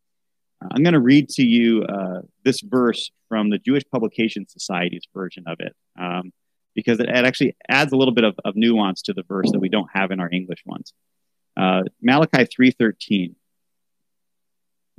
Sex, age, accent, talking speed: male, 30-49, American, 170 wpm